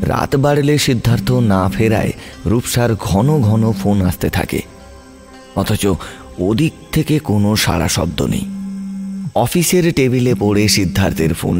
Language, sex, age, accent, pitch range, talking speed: Bengali, male, 30-49, native, 85-115 Hz, 55 wpm